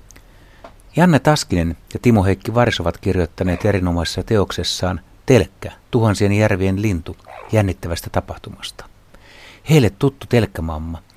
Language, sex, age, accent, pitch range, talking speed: Finnish, male, 60-79, native, 90-110 Hz, 95 wpm